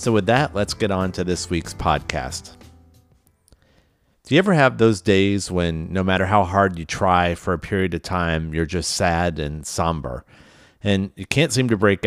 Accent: American